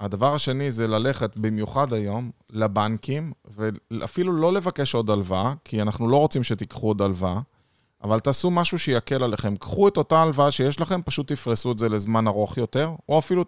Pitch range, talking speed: 110-140 Hz, 175 wpm